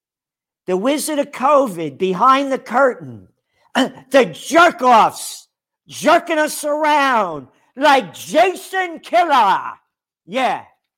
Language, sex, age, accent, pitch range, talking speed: English, male, 50-69, American, 205-310 Hz, 85 wpm